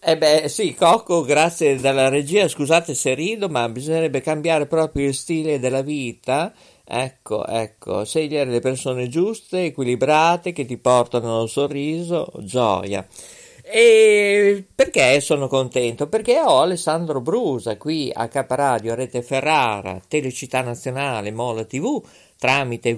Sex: male